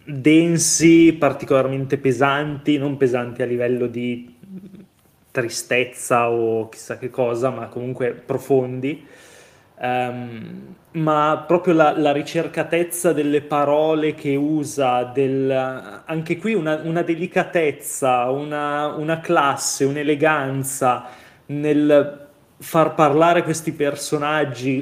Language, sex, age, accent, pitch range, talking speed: Italian, male, 20-39, native, 135-160 Hz, 95 wpm